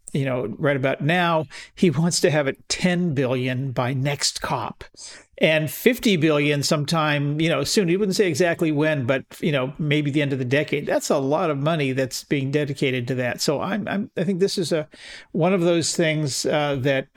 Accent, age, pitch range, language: American, 50-69, 135-170 Hz, English